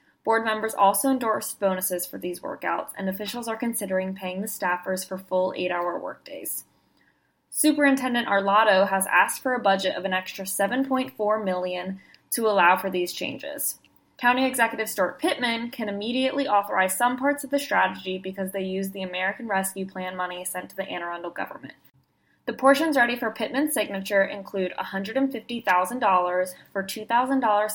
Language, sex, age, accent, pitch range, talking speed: English, female, 20-39, American, 185-240 Hz, 155 wpm